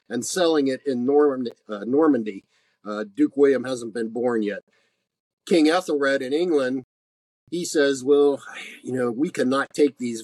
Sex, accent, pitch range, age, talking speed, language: male, American, 120-140 Hz, 50-69, 160 wpm, English